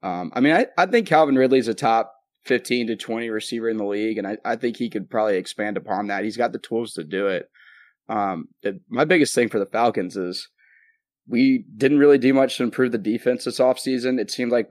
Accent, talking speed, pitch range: American, 235 wpm, 105-120 Hz